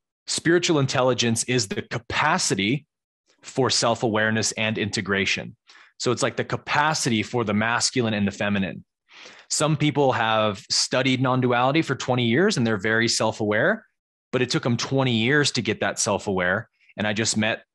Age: 20-39